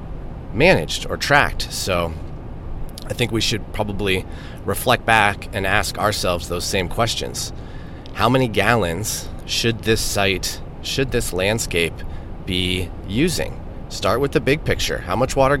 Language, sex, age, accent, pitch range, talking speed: English, male, 30-49, American, 85-110 Hz, 140 wpm